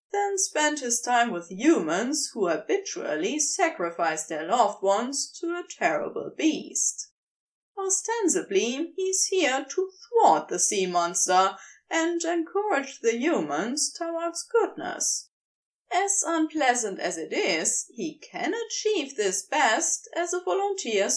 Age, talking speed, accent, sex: 20-39, 120 wpm, German, female